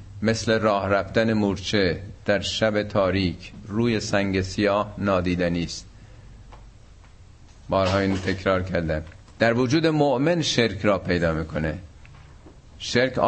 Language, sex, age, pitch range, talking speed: Persian, male, 50-69, 95-125 Hz, 110 wpm